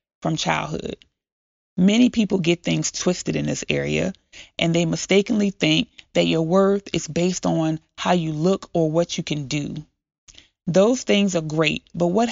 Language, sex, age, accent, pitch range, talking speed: English, female, 30-49, American, 165-210 Hz, 165 wpm